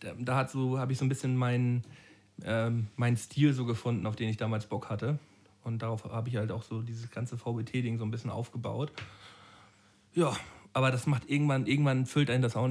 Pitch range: 110-130 Hz